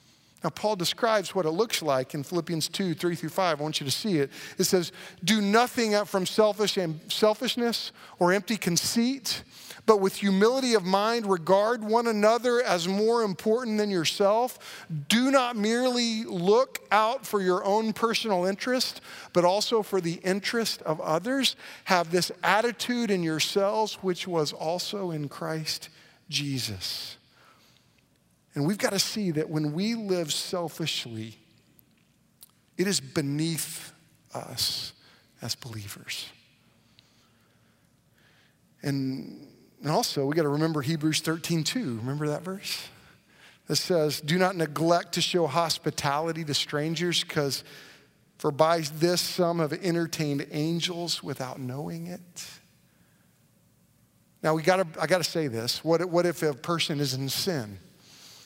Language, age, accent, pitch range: English, 50-69, American, 150-205 Hz